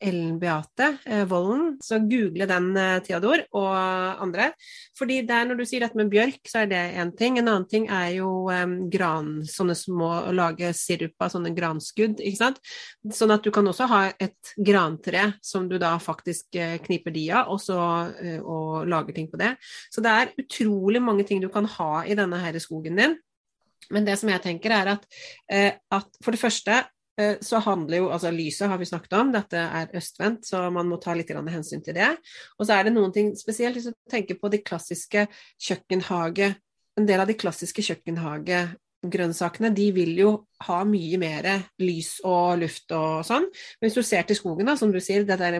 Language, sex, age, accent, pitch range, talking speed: English, female, 30-49, Swedish, 175-215 Hz, 200 wpm